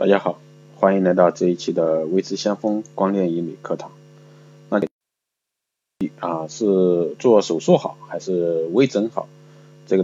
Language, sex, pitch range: Chinese, male, 95-145 Hz